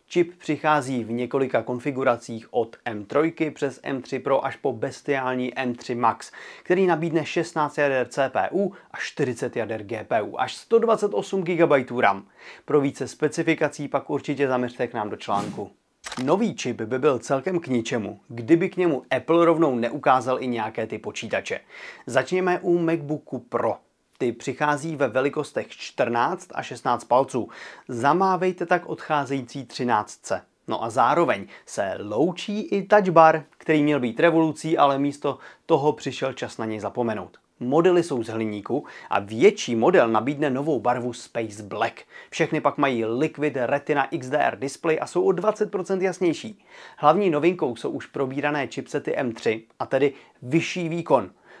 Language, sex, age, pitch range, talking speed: Czech, male, 30-49, 125-165 Hz, 145 wpm